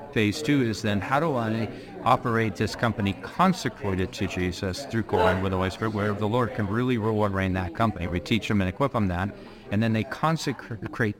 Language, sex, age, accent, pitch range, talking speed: English, male, 50-69, American, 100-120 Hz, 210 wpm